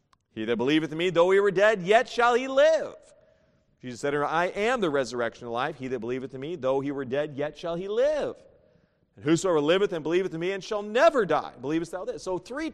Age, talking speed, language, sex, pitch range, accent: 40-59, 245 wpm, English, male, 135-205 Hz, American